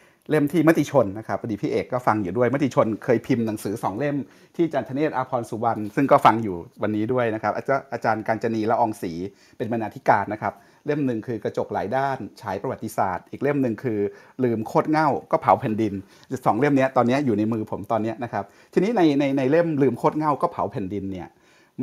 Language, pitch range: Thai, 105-140 Hz